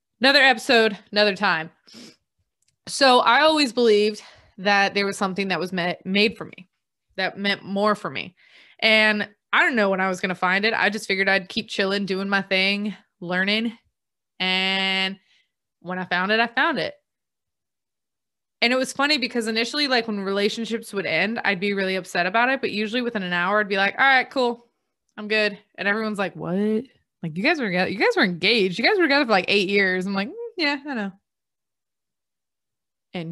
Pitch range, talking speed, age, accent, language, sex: 190-245 Hz, 195 wpm, 20-39, American, English, female